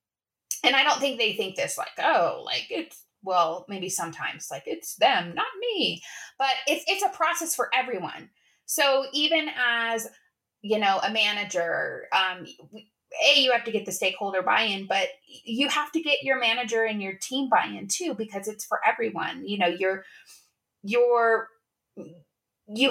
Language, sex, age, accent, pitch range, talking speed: English, female, 20-39, American, 195-255 Hz, 165 wpm